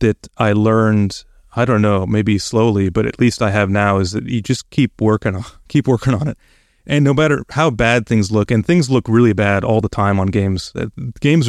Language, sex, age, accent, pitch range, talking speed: English, male, 30-49, American, 105-125 Hz, 215 wpm